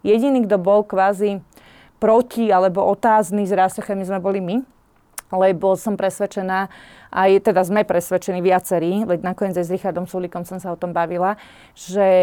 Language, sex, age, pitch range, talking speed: Slovak, female, 30-49, 185-220 Hz, 160 wpm